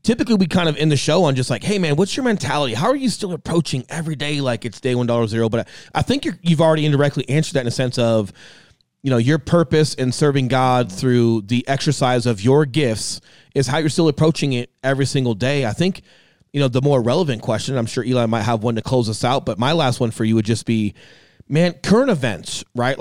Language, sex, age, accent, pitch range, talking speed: English, male, 30-49, American, 125-155 Hz, 245 wpm